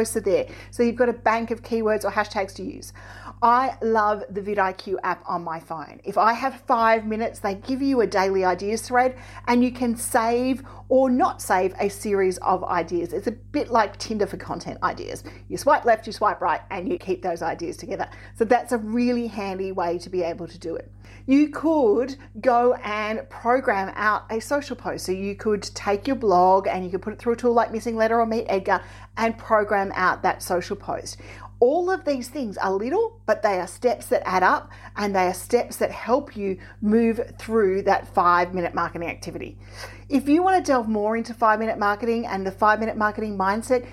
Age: 40-59